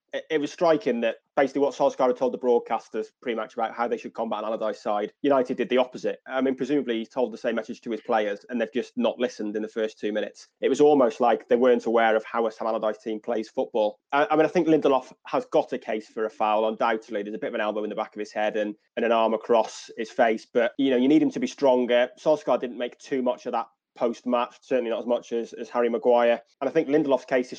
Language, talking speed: English, 265 wpm